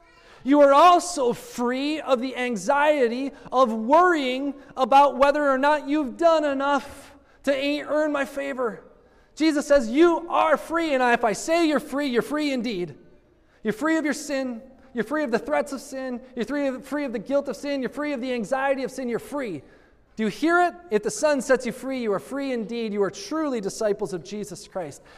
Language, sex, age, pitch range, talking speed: English, male, 20-39, 195-280 Hz, 200 wpm